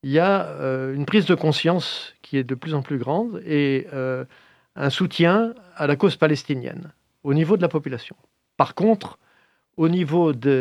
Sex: male